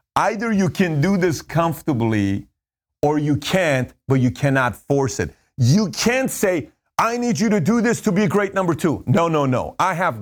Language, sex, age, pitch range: English, male, 40-59, 125-180 Hz